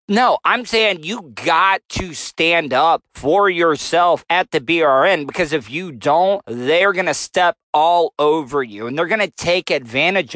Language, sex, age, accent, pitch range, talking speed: English, male, 40-59, American, 160-200 Hz, 175 wpm